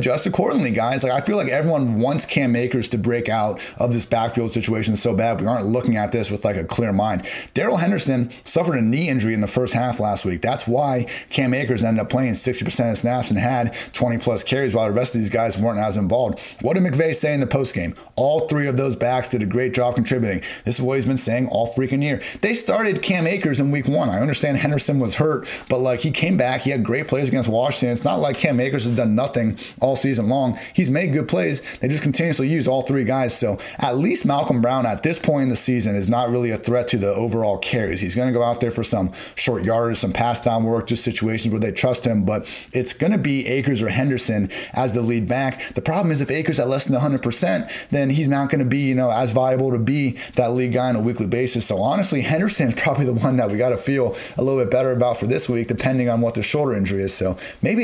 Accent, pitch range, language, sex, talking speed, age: American, 115-135 Hz, English, male, 255 wpm, 30-49